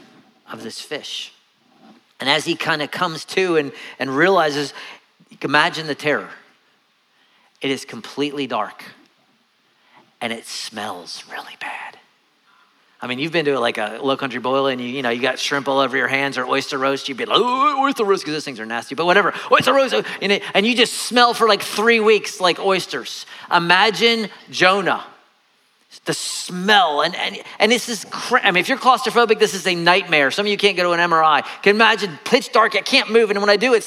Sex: male